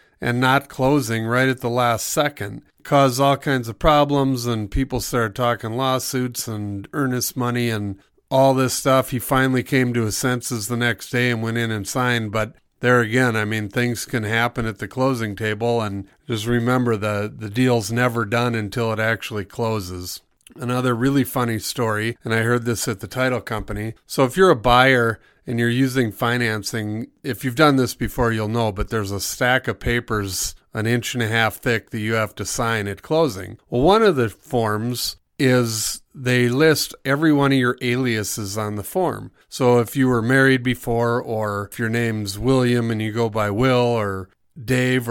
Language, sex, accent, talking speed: English, male, American, 190 wpm